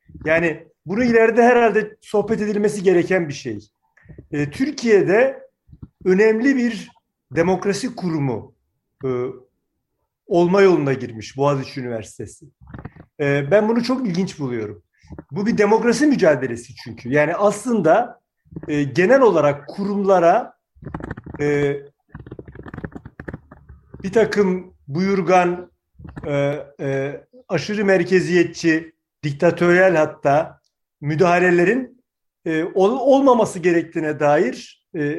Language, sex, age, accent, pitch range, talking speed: Turkish, male, 40-59, native, 140-205 Hz, 90 wpm